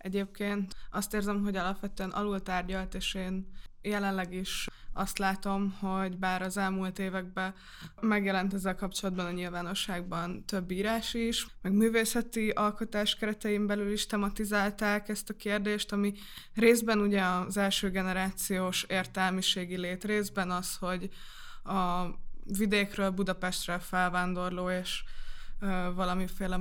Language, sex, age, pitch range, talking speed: Hungarian, female, 20-39, 185-205 Hz, 120 wpm